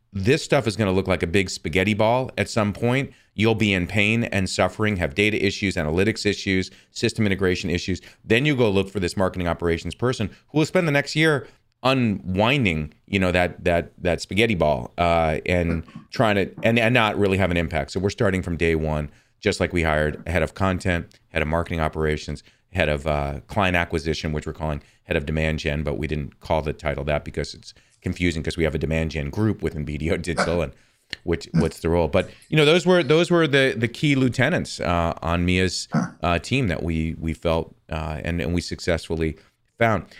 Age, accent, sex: 30-49, American, male